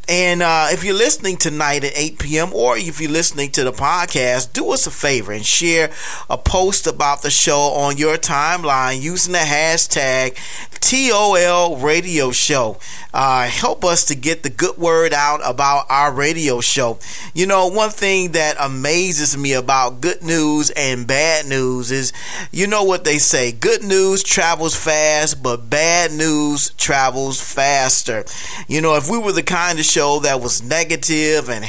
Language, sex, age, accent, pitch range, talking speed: English, male, 40-59, American, 140-165 Hz, 170 wpm